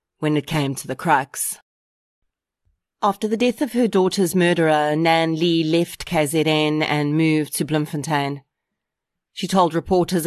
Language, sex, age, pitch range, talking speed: English, female, 30-49, 150-180 Hz, 140 wpm